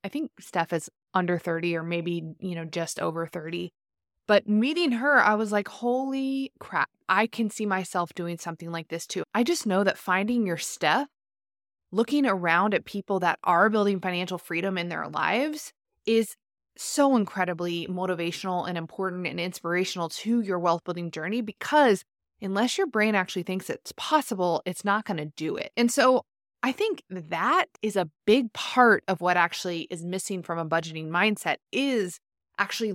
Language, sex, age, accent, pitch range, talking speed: English, female, 20-39, American, 175-235 Hz, 175 wpm